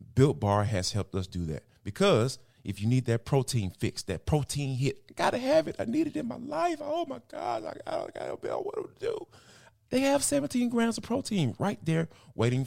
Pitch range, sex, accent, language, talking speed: 115-190 Hz, male, American, English, 215 wpm